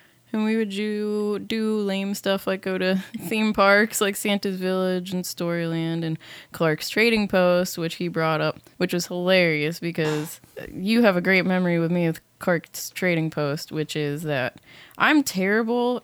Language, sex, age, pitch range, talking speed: English, female, 20-39, 165-200 Hz, 170 wpm